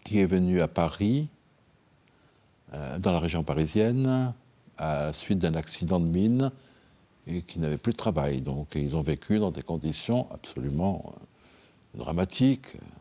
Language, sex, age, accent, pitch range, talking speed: French, male, 60-79, French, 80-115 Hz, 150 wpm